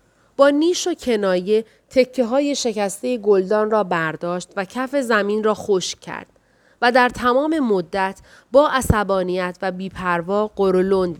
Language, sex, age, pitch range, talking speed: Persian, female, 30-49, 195-255 Hz, 135 wpm